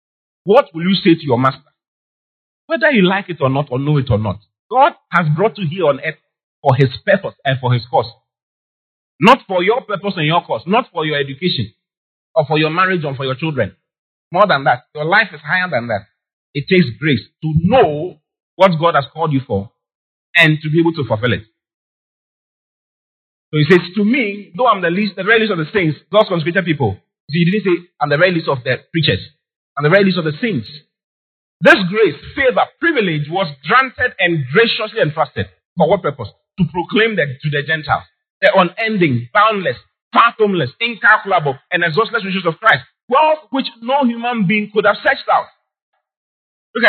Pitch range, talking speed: 150-220 Hz, 195 wpm